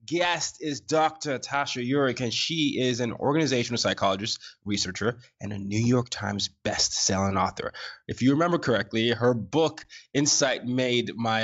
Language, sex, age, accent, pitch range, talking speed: English, male, 20-39, American, 105-130 Hz, 145 wpm